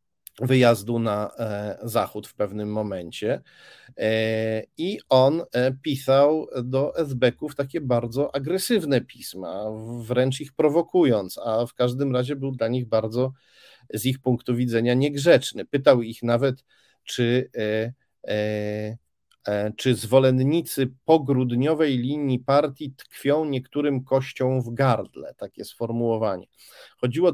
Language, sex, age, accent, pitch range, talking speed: Polish, male, 40-59, native, 115-135 Hz, 105 wpm